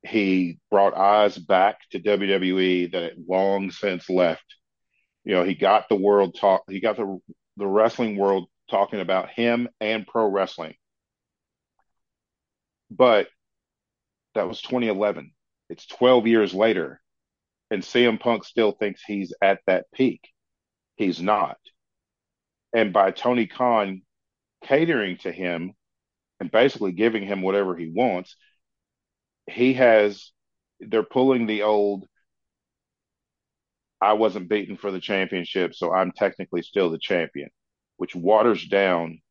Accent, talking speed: American, 125 wpm